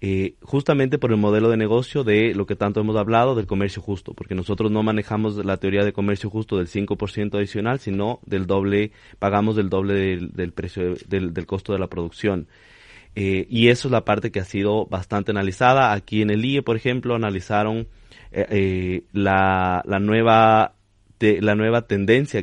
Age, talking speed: 30-49, 185 wpm